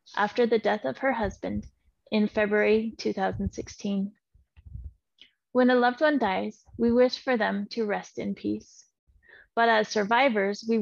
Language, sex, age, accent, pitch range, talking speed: English, female, 20-39, American, 200-240 Hz, 145 wpm